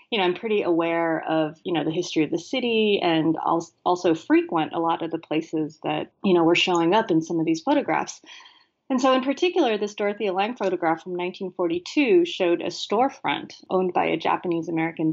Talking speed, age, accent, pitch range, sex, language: 195 wpm, 30-49, American, 165-225 Hz, female, English